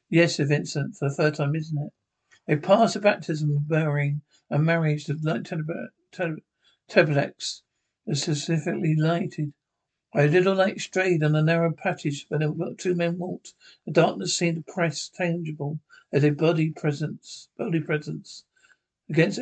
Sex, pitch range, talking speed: male, 155-175 Hz, 160 wpm